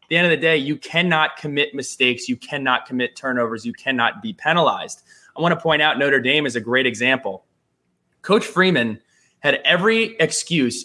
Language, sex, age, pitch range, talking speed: English, male, 20-39, 125-160 Hz, 185 wpm